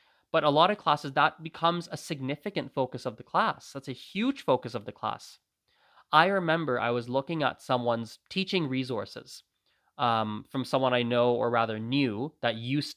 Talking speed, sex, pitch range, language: 180 wpm, male, 125-155 Hz, English